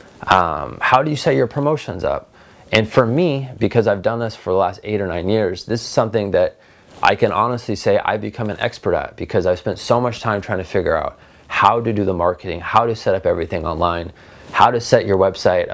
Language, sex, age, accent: English, male, 30-49, American